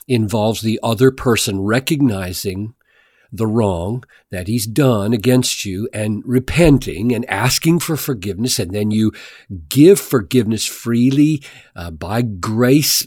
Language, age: English, 50-69